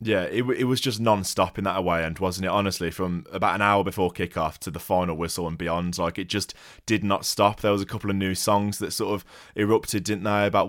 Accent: British